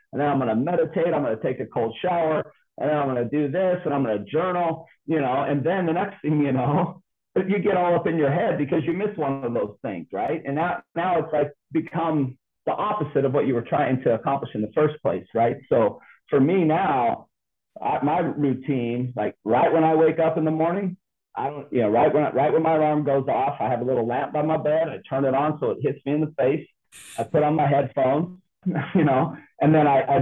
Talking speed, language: 255 wpm, English